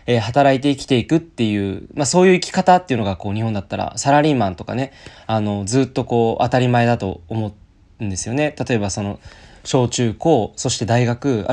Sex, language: male, Japanese